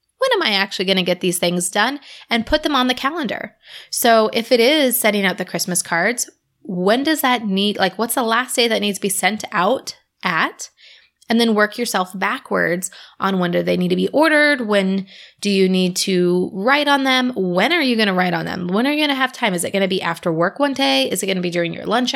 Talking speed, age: 255 wpm, 20-39